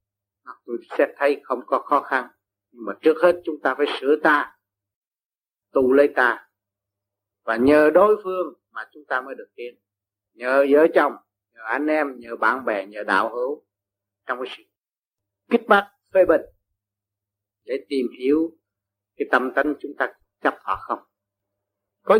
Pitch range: 100-155 Hz